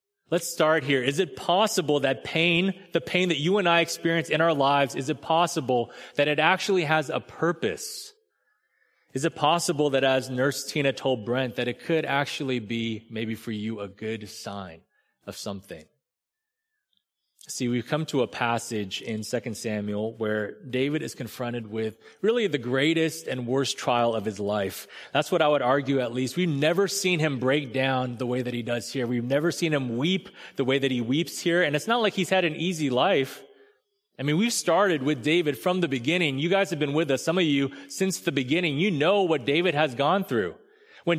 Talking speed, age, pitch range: 205 wpm, 30-49, 135-180 Hz